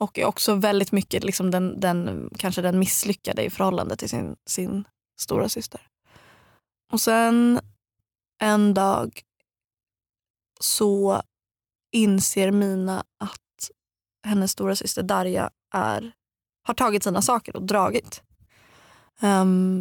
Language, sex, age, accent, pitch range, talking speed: Swedish, female, 20-39, native, 190-215 Hz, 115 wpm